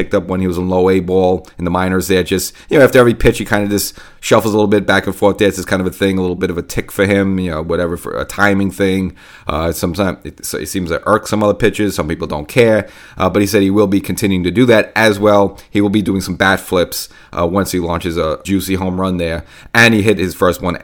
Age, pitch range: 30-49, 90-100 Hz